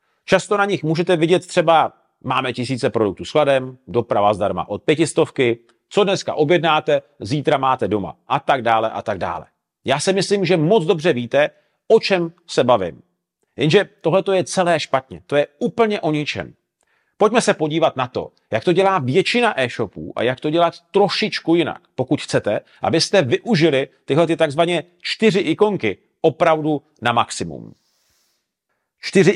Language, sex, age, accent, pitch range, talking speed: Czech, male, 40-59, native, 125-170 Hz, 155 wpm